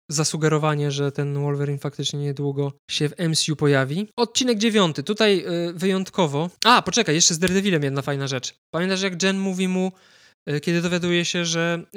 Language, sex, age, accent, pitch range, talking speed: Polish, male, 20-39, native, 150-185 Hz, 160 wpm